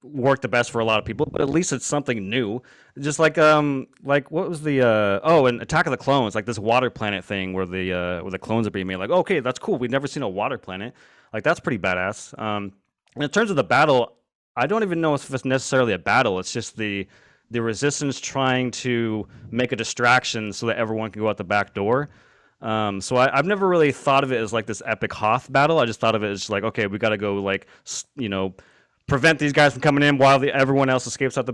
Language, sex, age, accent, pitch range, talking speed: English, male, 20-39, American, 110-145 Hz, 255 wpm